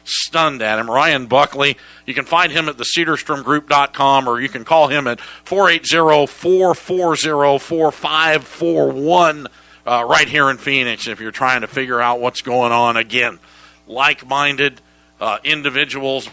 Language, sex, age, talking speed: English, male, 50-69, 130 wpm